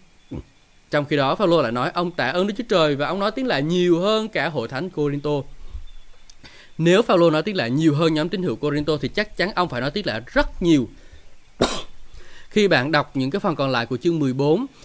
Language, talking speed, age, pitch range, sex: Vietnamese, 220 wpm, 20-39, 135-185 Hz, male